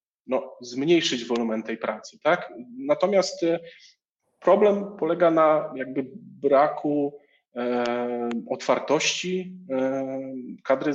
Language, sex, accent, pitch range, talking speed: Polish, male, native, 125-170 Hz, 75 wpm